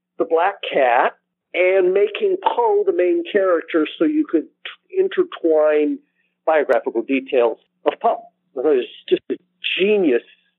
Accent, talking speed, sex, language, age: American, 130 wpm, male, English, 50-69